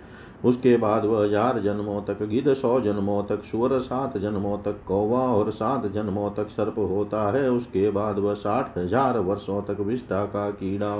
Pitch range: 110-140 Hz